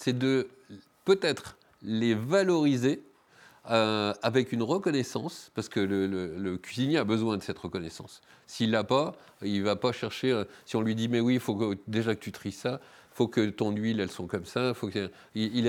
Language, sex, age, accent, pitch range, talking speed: French, male, 40-59, French, 110-155 Hz, 215 wpm